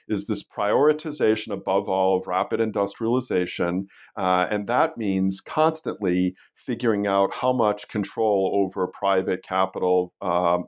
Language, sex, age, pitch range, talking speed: English, male, 40-59, 90-105 Hz, 125 wpm